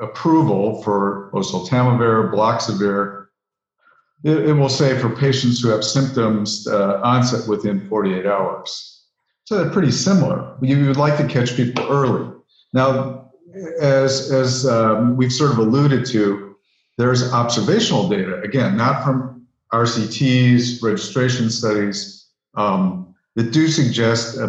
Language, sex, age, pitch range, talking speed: English, male, 50-69, 115-145 Hz, 125 wpm